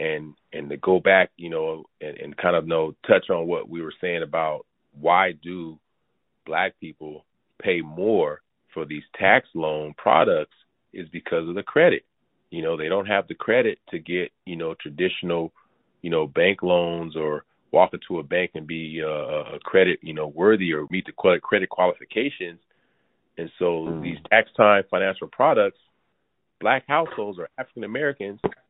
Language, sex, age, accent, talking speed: English, male, 30-49, American, 170 wpm